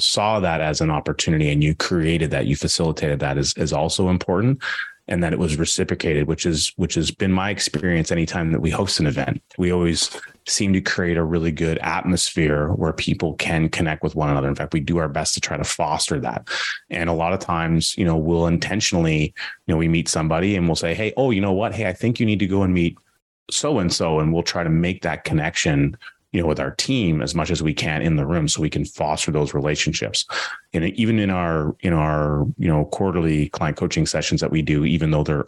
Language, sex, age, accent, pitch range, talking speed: English, male, 30-49, American, 75-95 Hz, 230 wpm